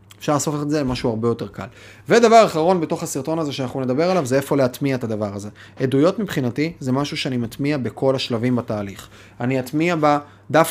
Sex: male